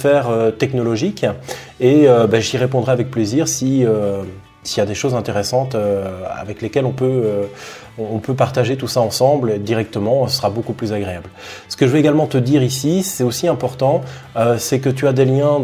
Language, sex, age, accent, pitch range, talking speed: French, male, 20-39, French, 110-135 Hz, 200 wpm